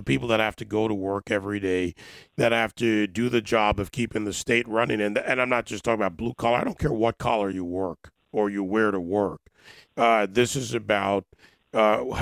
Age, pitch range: 40-59, 100-120 Hz